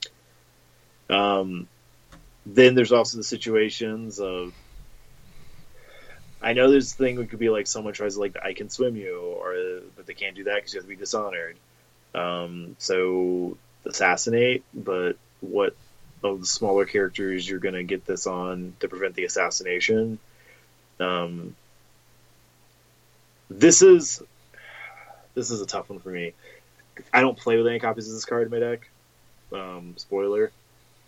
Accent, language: American, English